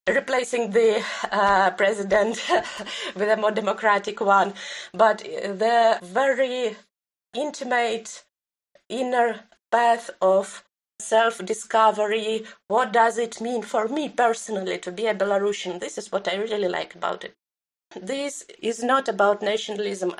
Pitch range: 185-230 Hz